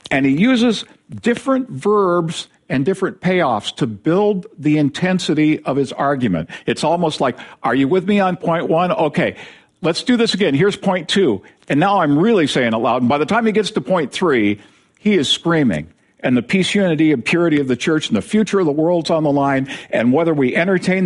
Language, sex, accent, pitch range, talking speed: English, male, American, 125-185 Hz, 210 wpm